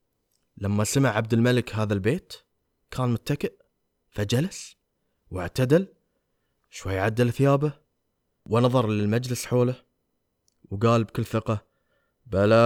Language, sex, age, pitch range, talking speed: Arabic, male, 20-39, 120-170 Hz, 95 wpm